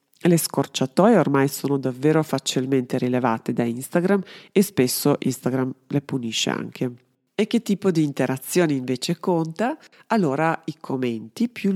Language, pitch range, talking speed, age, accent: Italian, 130-165 Hz, 135 wpm, 40-59, native